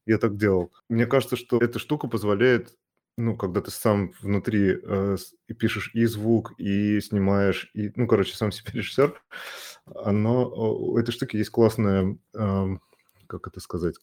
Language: Russian